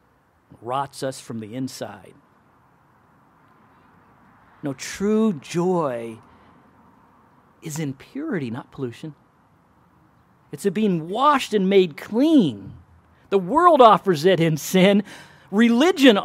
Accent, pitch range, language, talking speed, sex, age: American, 140-205 Hz, English, 100 wpm, male, 40-59